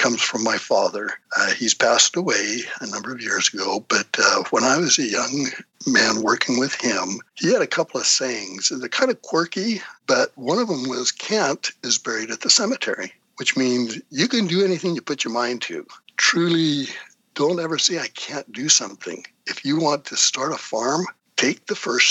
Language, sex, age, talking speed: English, male, 60-79, 205 wpm